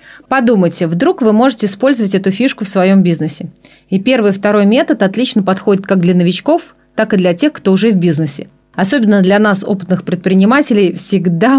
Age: 30-49